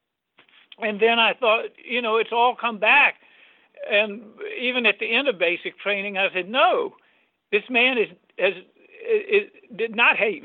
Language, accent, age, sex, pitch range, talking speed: English, American, 60-79, male, 175-270 Hz, 170 wpm